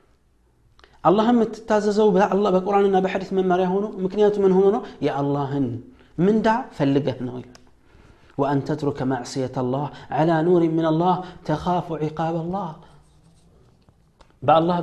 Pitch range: 140-190 Hz